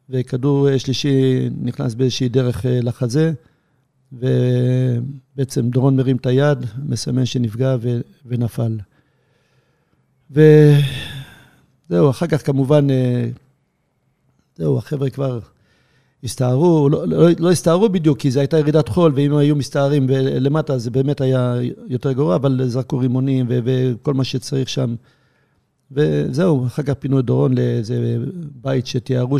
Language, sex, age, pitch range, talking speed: Hebrew, male, 50-69, 125-145 Hz, 120 wpm